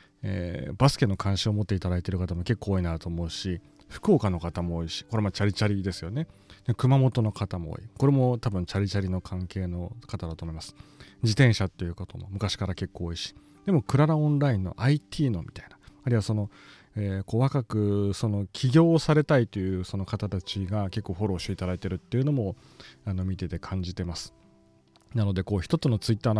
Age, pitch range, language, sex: 30-49, 90-120 Hz, Japanese, male